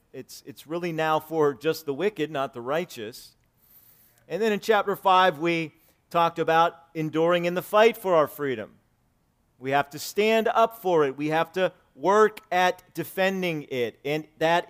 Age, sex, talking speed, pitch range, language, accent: 40-59, male, 170 wpm, 120-160 Hz, English, American